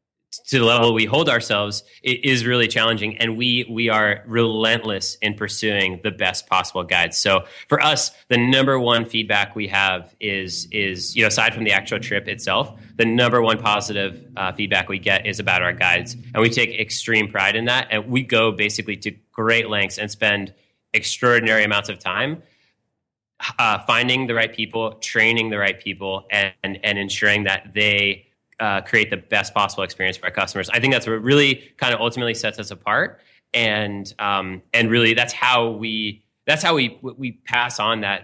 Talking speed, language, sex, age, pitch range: 190 wpm, English, male, 30-49, 100-115 Hz